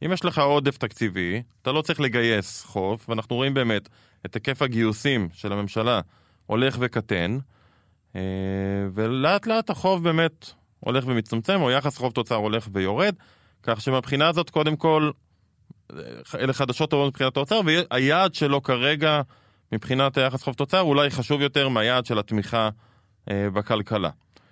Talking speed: 135 wpm